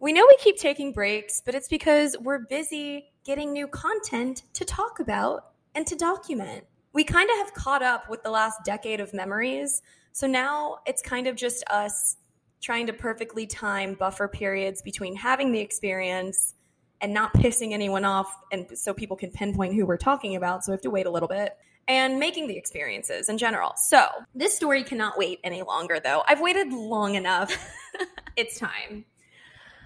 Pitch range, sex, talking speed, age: 195-275 Hz, female, 185 wpm, 20-39